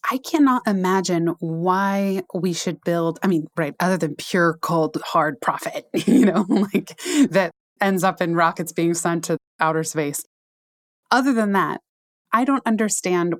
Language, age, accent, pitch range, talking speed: English, 20-39, American, 165-195 Hz, 155 wpm